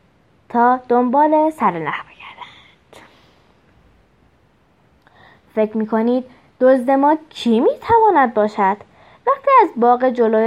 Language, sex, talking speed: Persian, female, 95 wpm